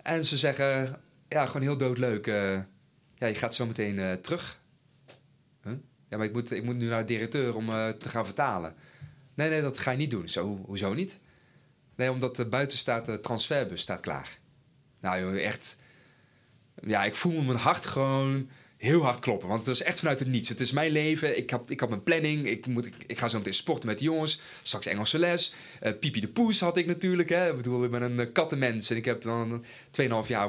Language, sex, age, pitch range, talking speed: Dutch, male, 30-49, 110-145 Hz, 210 wpm